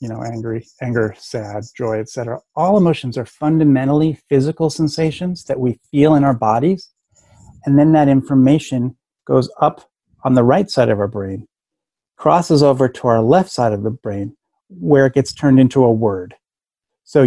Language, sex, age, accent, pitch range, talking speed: English, male, 30-49, American, 120-150 Hz, 170 wpm